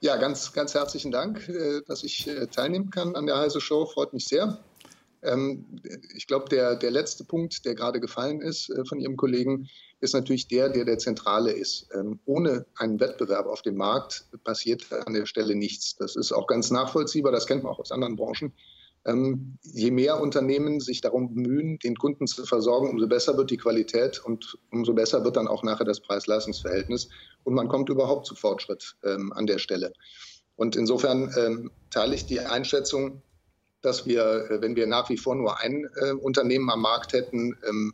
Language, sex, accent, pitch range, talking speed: German, male, German, 115-140 Hz, 175 wpm